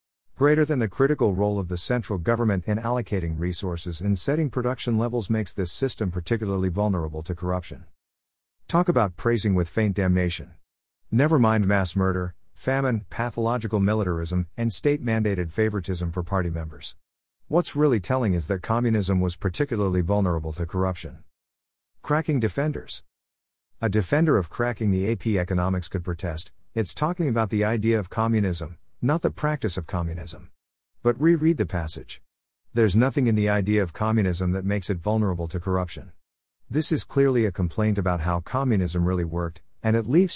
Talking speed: 160 wpm